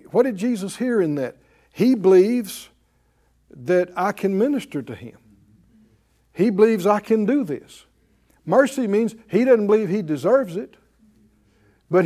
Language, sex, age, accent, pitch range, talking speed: English, male, 60-79, American, 165-240 Hz, 145 wpm